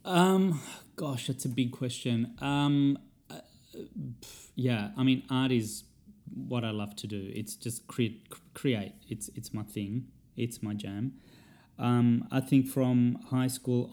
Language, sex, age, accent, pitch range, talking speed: English, male, 20-39, Australian, 110-125 Hz, 145 wpm